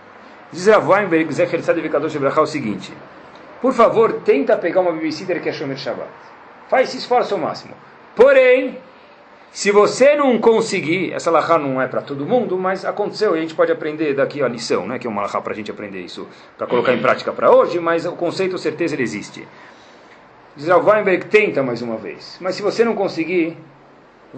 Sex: male